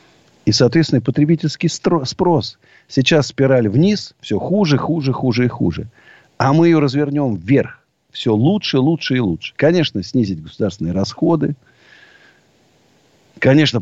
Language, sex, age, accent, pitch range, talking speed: Russian, male, 50-69, native, 105-150 Hz, 120 wpm